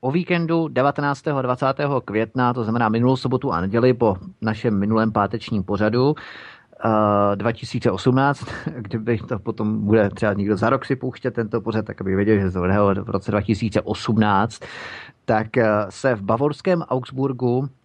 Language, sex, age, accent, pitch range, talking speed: Czech, male, 30-49, native, 105-130 Hz, 145 wpm